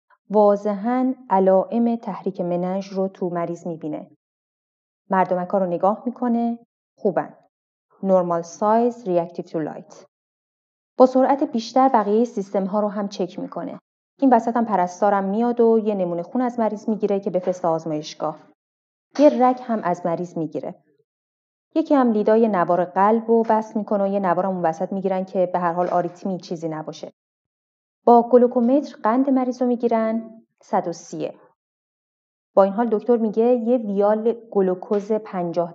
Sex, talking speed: female, 160 wpm